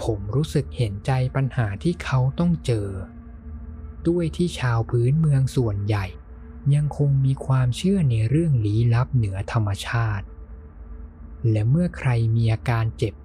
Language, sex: Thai, male